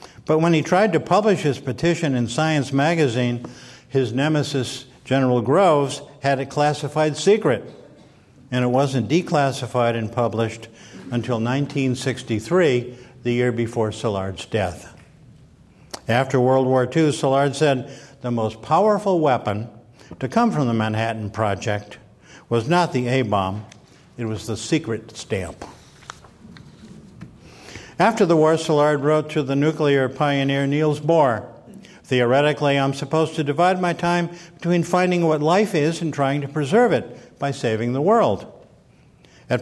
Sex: male